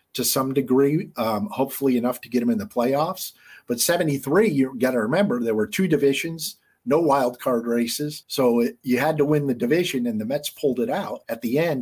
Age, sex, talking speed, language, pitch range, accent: 50-69, male, 210 wpm, English, 120-155 Hz, American